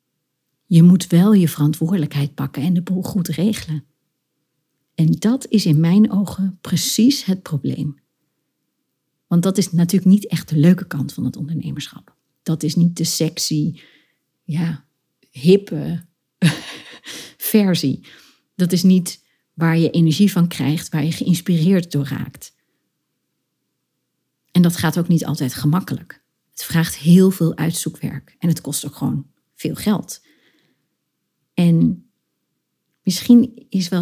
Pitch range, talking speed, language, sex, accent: 155-190 Hz, 130 wpm, Dutch, female, Dutch